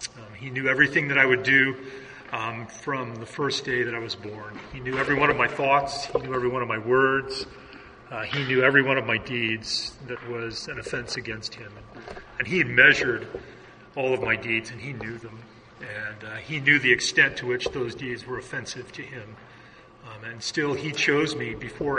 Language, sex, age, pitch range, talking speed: English, male, 40-59, 115-135 Hz, 210 wpm